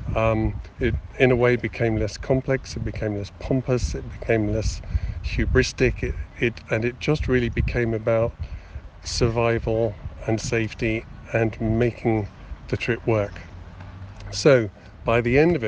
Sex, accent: male, British